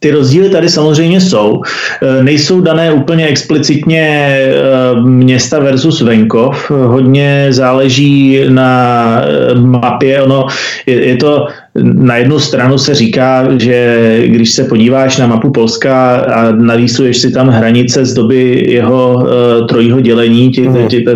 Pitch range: 120-135 Hz